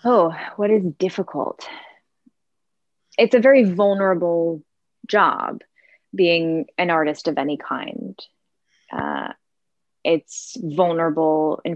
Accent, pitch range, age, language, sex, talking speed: American, 150-185 Hz, 20-39, English, female, 95 wpm